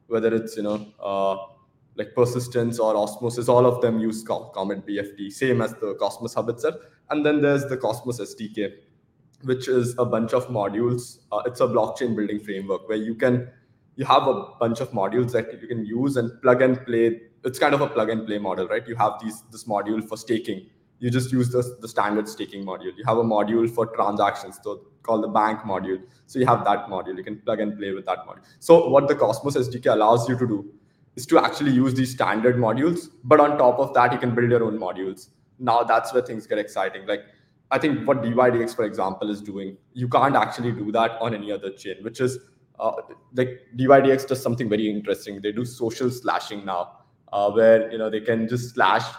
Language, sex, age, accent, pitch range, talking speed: English, male, 20-39, Indian, 105-125 Hz, 215 wpm